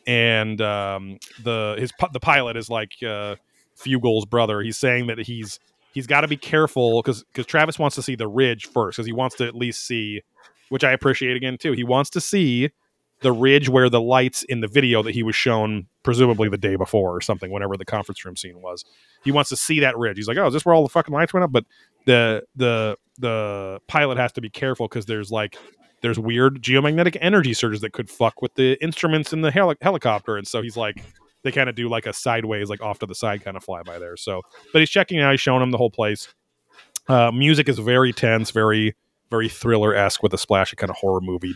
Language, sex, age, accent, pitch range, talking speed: English, male, 30-49, American, 105-130 Hz, 230 wpm